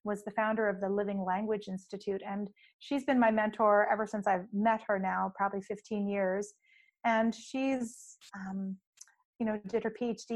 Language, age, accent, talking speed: English, 30-49, American, 175 wpm